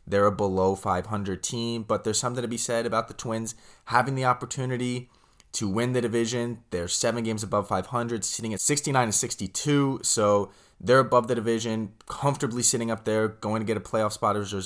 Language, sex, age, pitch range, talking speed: English, male, 20-39, 100-120 Hz, 190 wpm